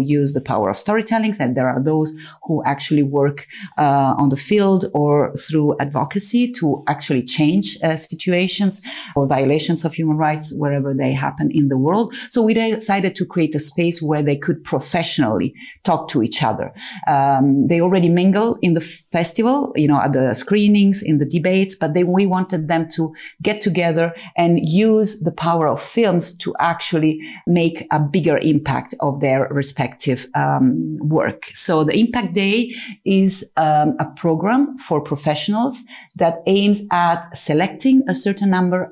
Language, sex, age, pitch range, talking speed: English, female, 40-59, 150-195 Hz, 165 wpm